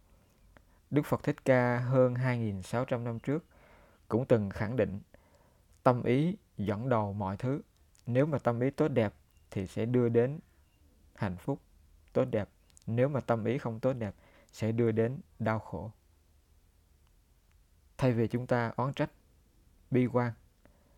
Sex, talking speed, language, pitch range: male, 150 wpm, Vietnamese, 95-125 Hz